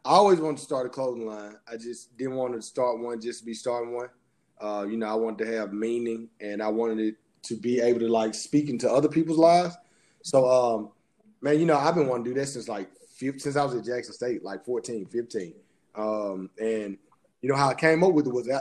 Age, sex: 30-49, male